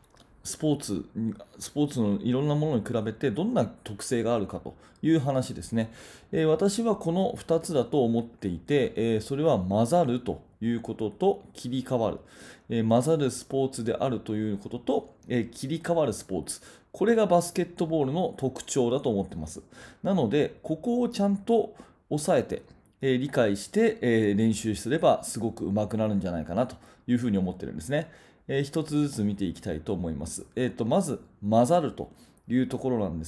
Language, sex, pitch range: Japanese, male, 105-145 Hz